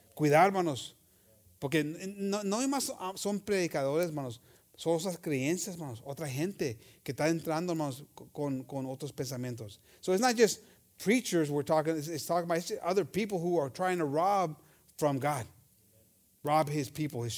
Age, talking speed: 30-49, 165 wpm